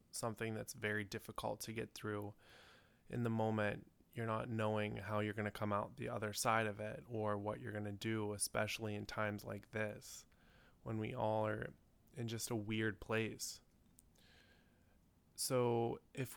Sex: male